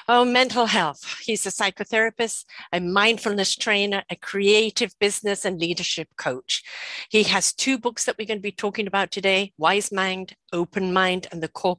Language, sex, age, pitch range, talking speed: English, female, 50-69, 175-225 Hz, 175 wpm